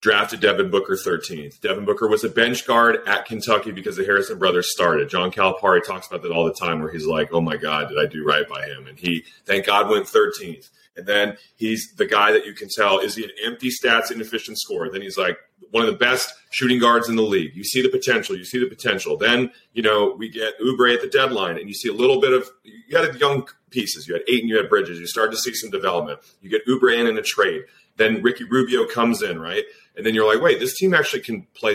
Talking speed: 255 wpm